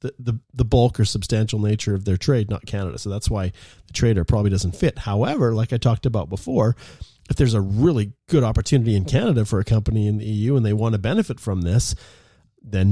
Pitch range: 100-120 Hz